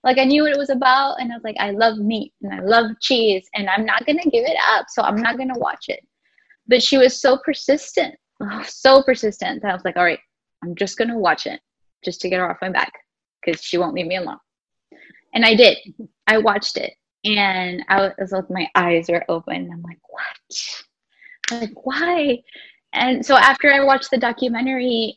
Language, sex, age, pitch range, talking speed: English, female, 10-29, 190-235 Hz, 225 wpm